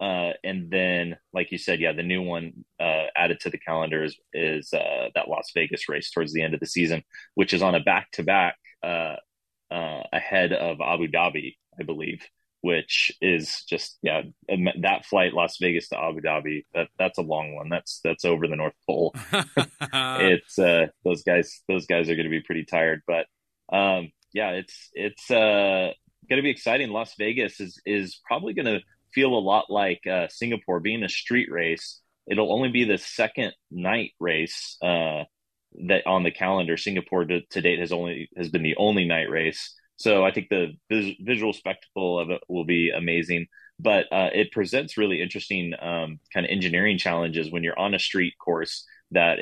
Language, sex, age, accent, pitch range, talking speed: English, male, 30-49, American, 80-95 Hz, 185 wpm